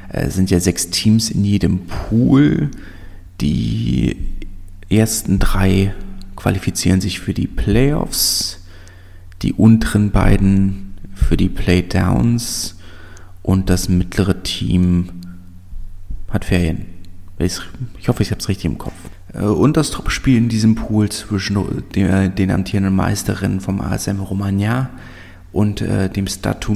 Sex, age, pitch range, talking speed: male, 30-49, 90-115 Hz, 115 wpm